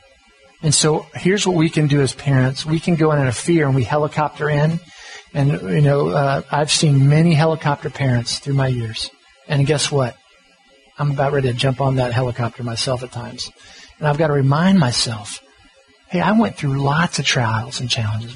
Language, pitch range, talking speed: English, 130-155 Hz, 200 wpm